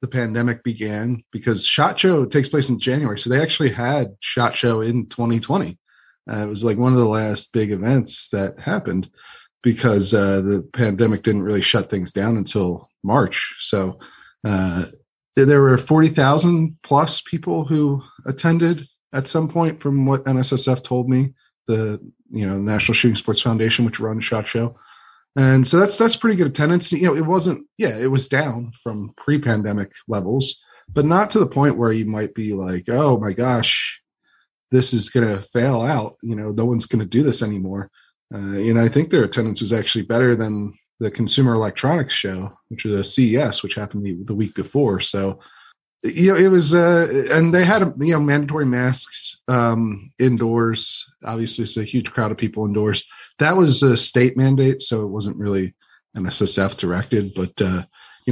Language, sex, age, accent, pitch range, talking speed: English, male, 20-39, American, 105-135 Hz, 180 wpm